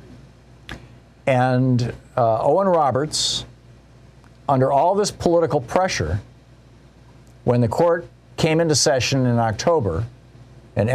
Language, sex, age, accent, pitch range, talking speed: English, male, 50-69, American, 110-135 Hz, 100 wpm